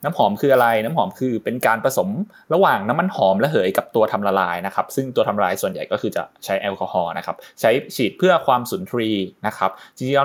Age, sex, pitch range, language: 20-39, male, 105-135 Hz, Thai